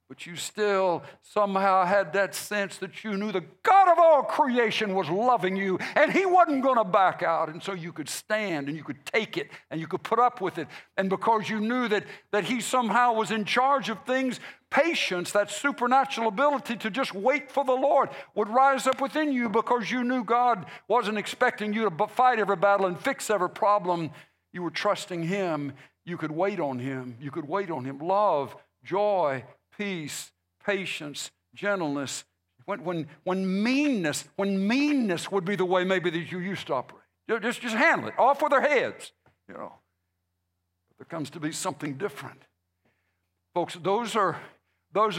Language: English